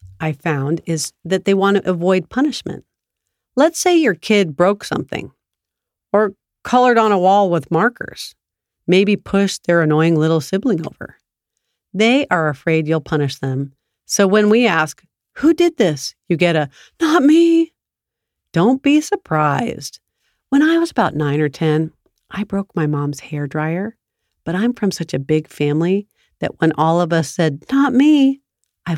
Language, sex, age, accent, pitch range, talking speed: English, female, 40-59, American, 155-230 Hz, 165 wpm